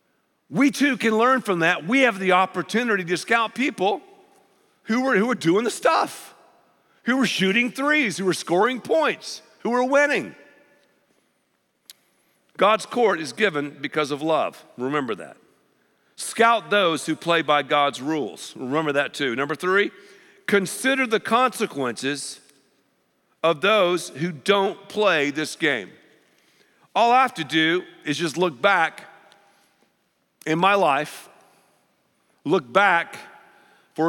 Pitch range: 150-215 Hz